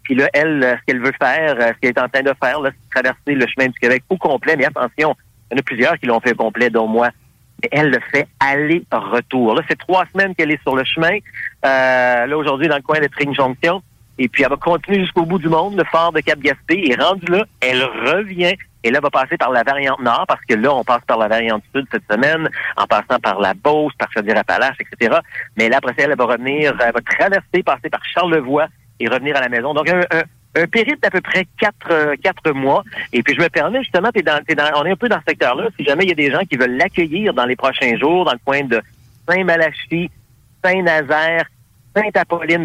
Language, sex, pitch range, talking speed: French, male, 125-170 Hz, 245 wpm